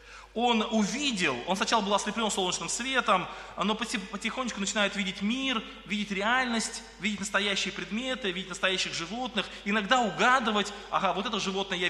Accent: native